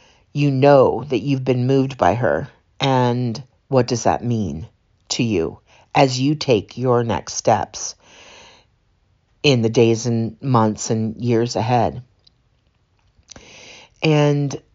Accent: American